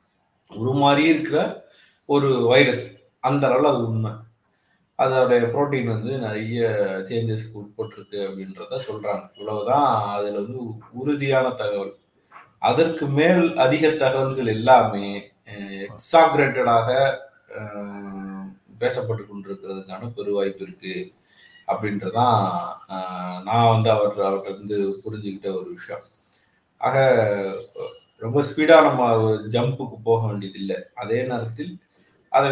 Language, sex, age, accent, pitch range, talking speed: Tamil, male, 30-49, native, 100-135 Hz, 90 wpm